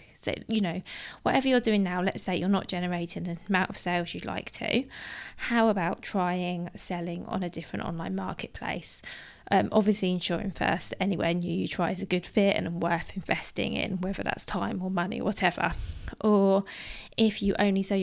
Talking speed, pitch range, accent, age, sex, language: 185 wpm, 185-220 Hz, British, 20-39, female, English